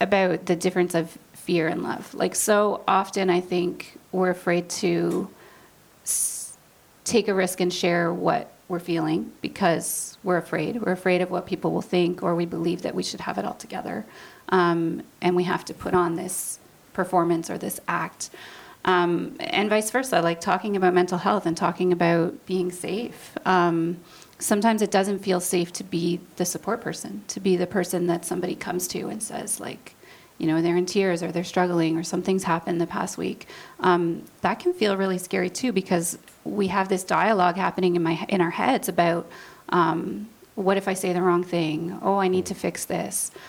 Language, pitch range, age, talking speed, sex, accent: English, 175-190 Hz, 30-49, 190 wpm, female, American